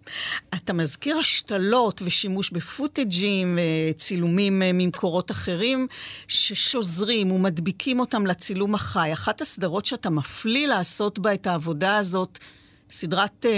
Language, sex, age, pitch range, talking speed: Hebrew, female, 50-69, 175-215 Hz, 100 wpm